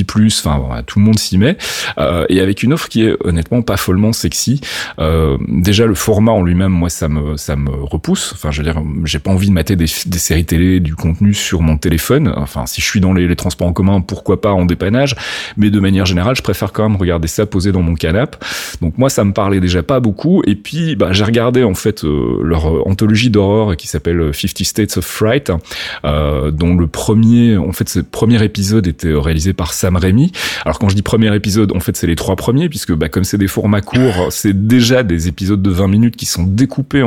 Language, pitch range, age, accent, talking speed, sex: French, 85-110 Hz, 30-49, French, 235 wpm, male